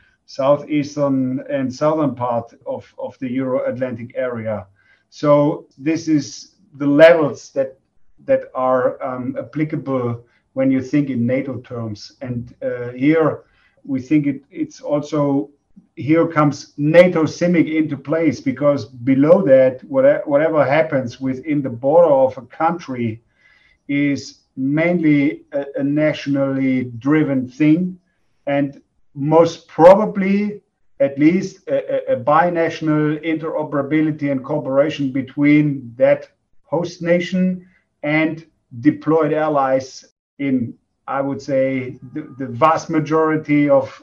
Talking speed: 115 wpm